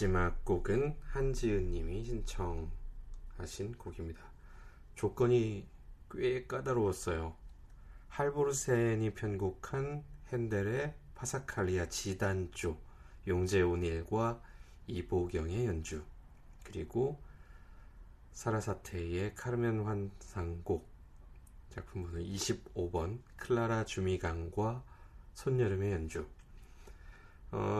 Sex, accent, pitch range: male, native, 80-110 Hz